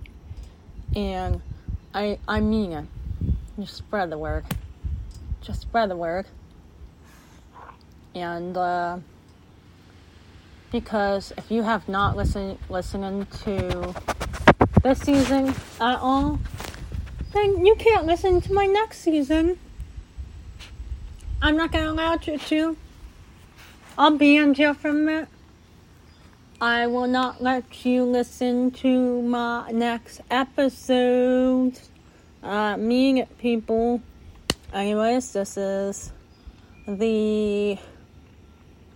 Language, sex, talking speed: English, female, 100 wpm